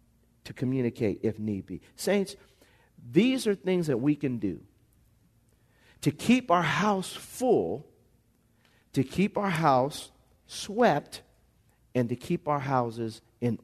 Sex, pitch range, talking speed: male, 120-200 Hz, 130 wpm